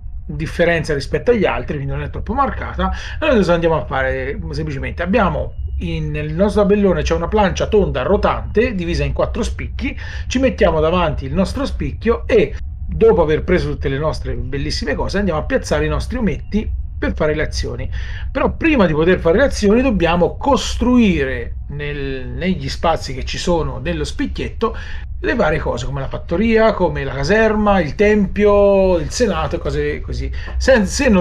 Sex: male